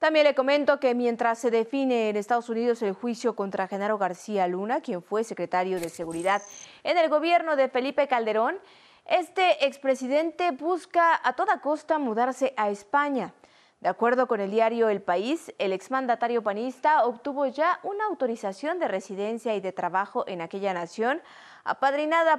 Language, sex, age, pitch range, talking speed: Spanish, female, 30-49, 210-295 Hz, 160 wpm